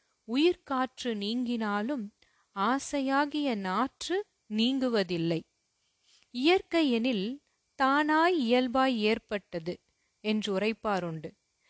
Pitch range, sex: 210-285 Hz, female